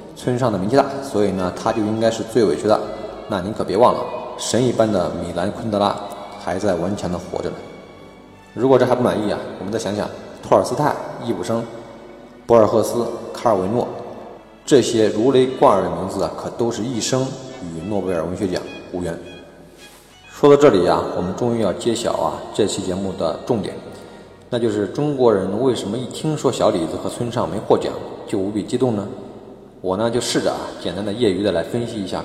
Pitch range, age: 95-120 Hz, 20-39